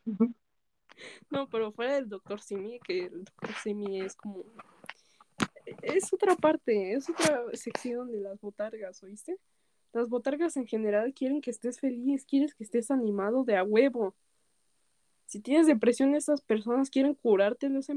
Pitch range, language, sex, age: 225-360 Hz, Korean, female, 20-39